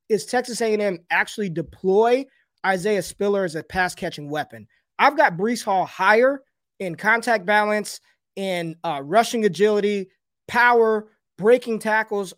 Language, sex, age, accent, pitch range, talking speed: English, male, 20-39, American, 180-225 Hz, 125 wpm